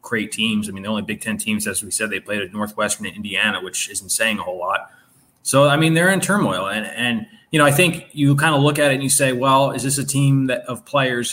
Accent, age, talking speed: American, 20-39, 280 wpm